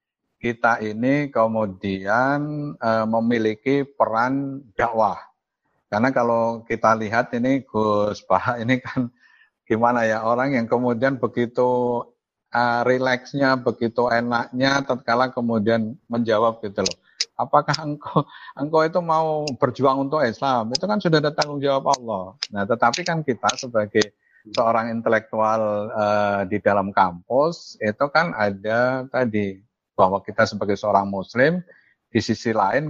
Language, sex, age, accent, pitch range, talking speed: Indonesian, male, 50-69, native, 105-125 Hz, 125 wpm